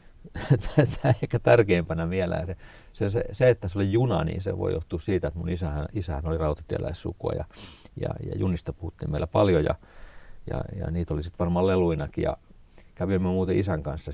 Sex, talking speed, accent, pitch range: male, 175 wpm, native, 85-110 Hz